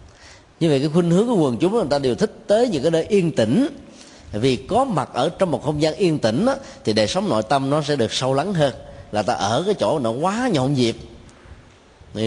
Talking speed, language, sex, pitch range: 240 wpm, Vietnamese, male, 105-135 Hz